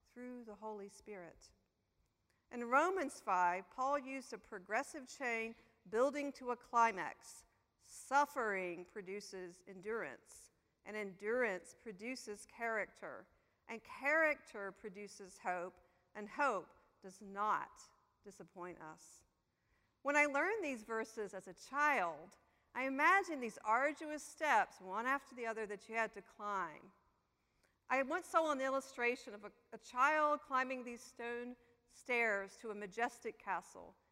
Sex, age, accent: female, 50-69, American